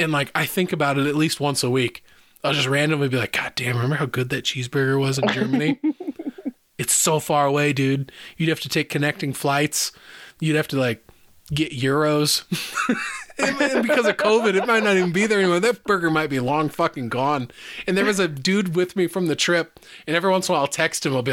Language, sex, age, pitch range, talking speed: English, male, 20-39, 130-180 Hz, 230 wpm